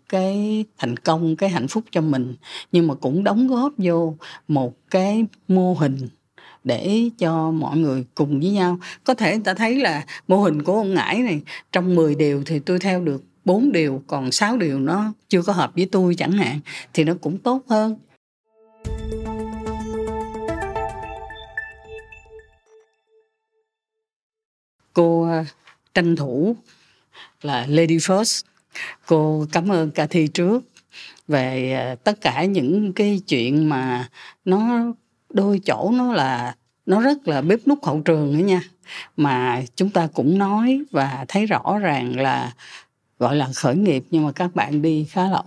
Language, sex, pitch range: Vietnamese, female, 150-210 Hz